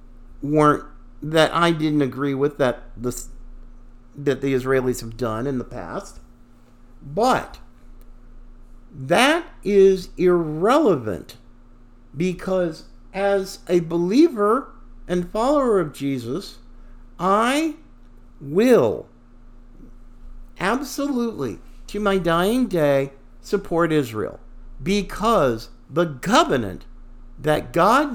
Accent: American